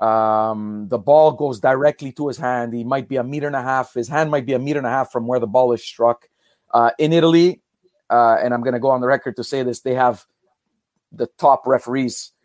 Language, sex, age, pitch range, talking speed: English, male, 30-49, 120-150 Hz, 245 wpm